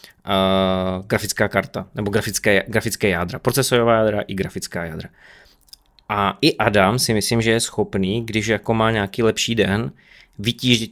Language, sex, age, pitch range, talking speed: Czech, male, 20-39, 100-115 Hz, 150 wpm